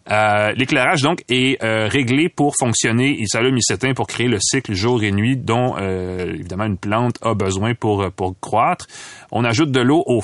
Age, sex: 30-49, male